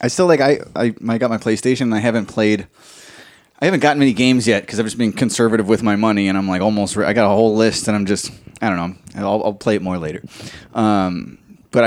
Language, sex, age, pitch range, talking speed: English, male, 20-39, 105-140 Hz, 255 wpm